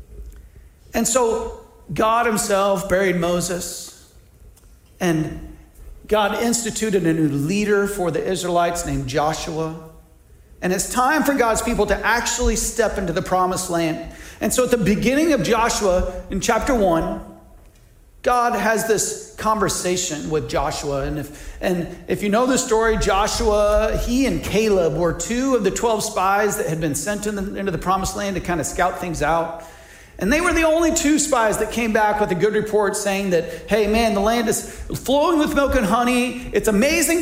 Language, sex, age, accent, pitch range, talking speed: English, male, 40-59, American, 180-235 Hz, 175 wpm